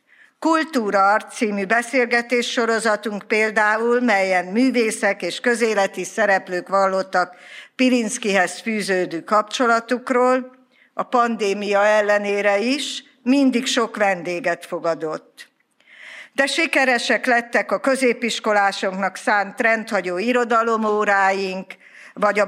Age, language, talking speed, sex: 50-69, Hungarian, 85 wpm, female